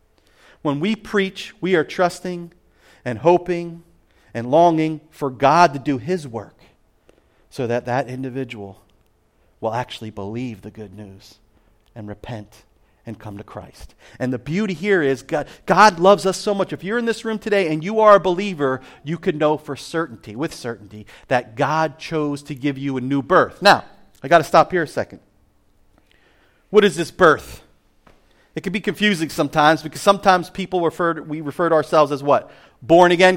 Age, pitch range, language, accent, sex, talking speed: 40-59, 130-185 Hz, English, American, male, 180 wpm